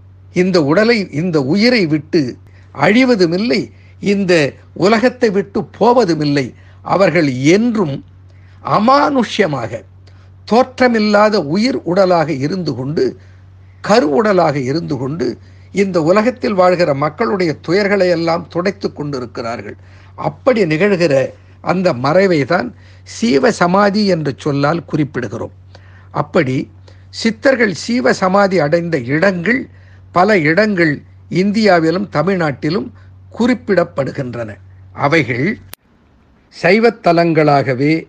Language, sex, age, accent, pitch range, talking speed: Tamil, male, 60-79, native, 130-200 Hz, 80 wpm